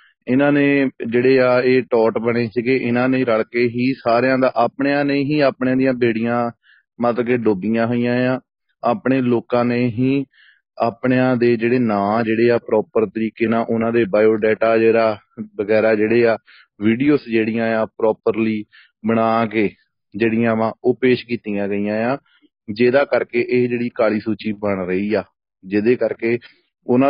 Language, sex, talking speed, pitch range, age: Punjabi, male, 90 wpm, 115-130 Hz, 30-49